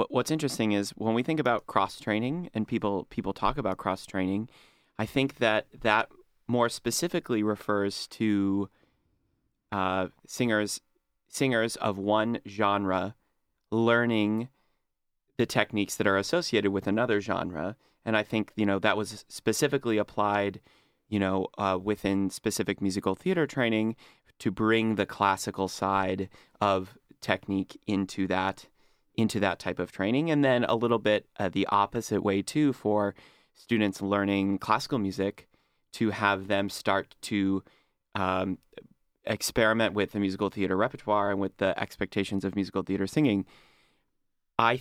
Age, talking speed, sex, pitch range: 30-49, 140 wpm, male, 95-115 Hz